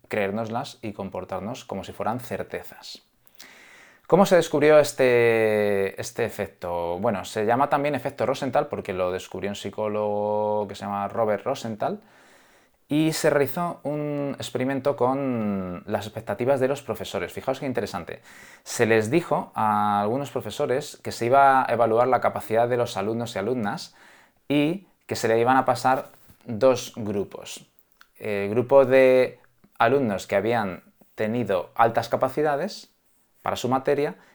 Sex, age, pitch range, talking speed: male, 20-39, 105-140 Hz, 145 wpm